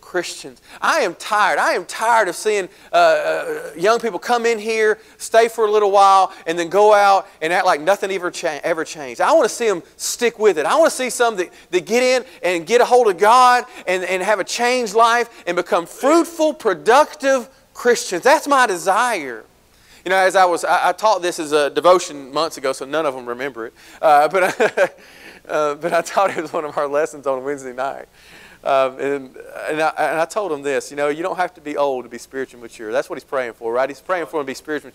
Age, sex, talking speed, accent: 40-59, male, 240 wpm, American